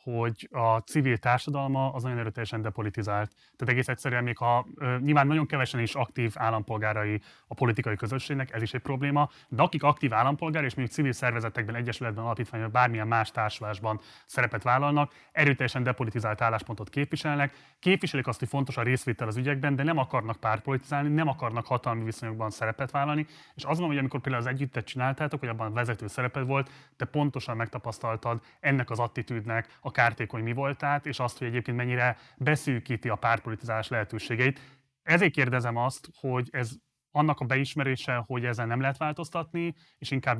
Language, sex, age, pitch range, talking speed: Hungarian, male, 30-49, 115-140 Hz, 165 wpm